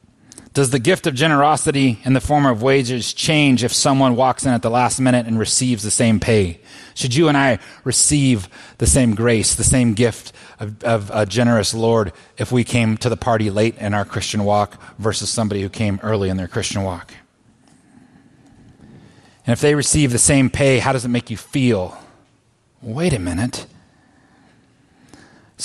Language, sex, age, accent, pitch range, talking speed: English, male, 30-49, American, 110-140 Hz, 180 wpm